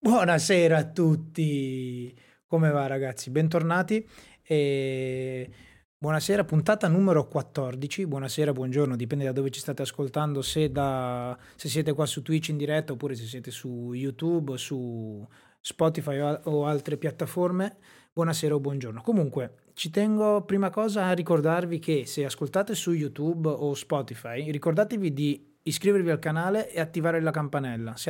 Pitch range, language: 135-165 Hz, Italian